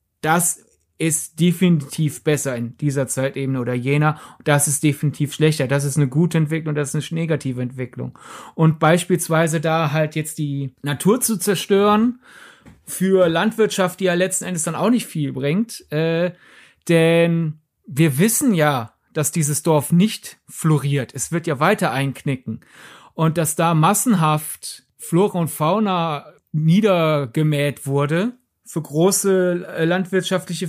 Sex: male